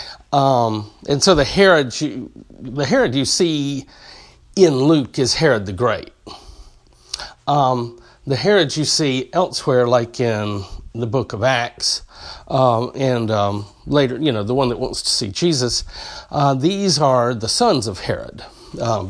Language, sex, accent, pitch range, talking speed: English, male, American, 115-150 Hz, 150 wpm